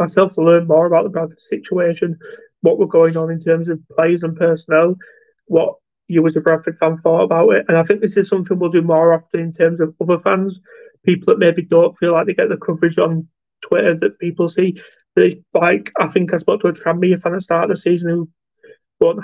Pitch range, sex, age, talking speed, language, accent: 160-185 Hz, male, 20-39, 235 wpm, English, British